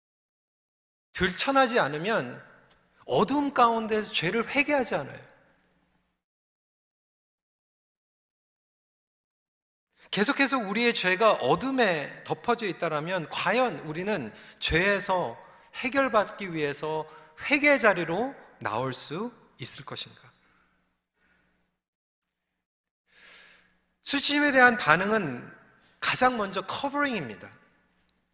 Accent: native